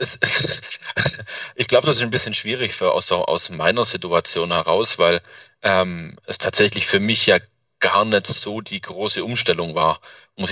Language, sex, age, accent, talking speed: German, male, 30-49, German, 160 wpm